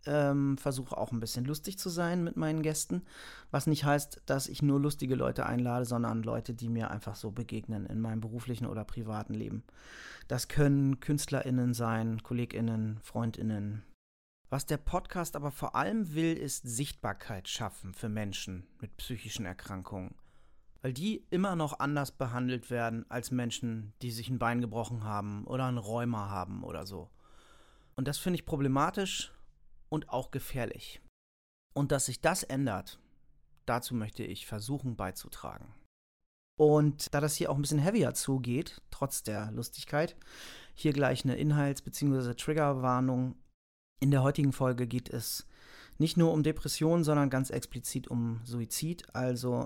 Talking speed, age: 155 wpm, 30-49